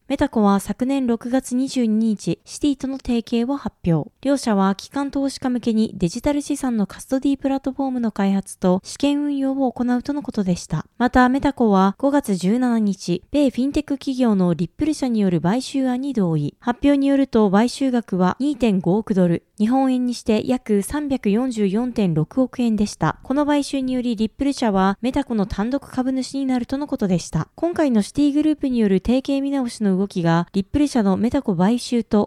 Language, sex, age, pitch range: Japanese, female, 20-39, 205-270 Hz